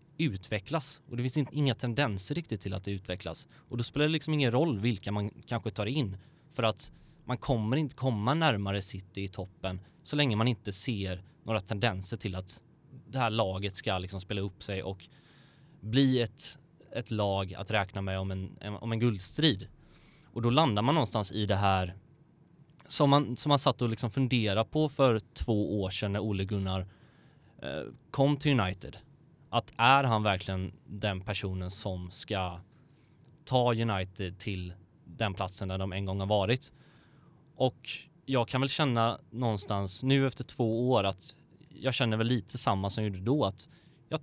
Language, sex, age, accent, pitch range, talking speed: Swedish, male, 20-39, native, 100-140 Hz, 175 wpm